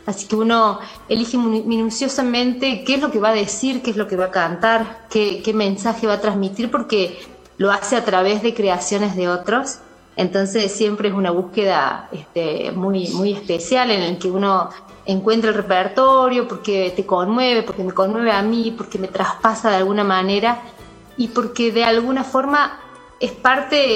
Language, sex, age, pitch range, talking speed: Spanish, female, 30-49, 190-230 Hz, 180 wpm